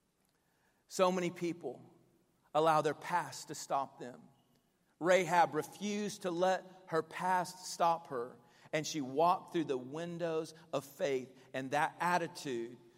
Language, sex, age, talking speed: English, male, 40-59, 130 wpm